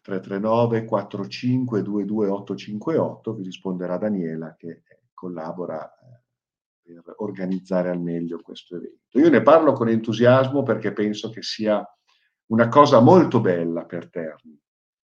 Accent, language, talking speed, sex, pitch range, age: native, Italian, 120 wpm, male, 95-120 Hz, 50-69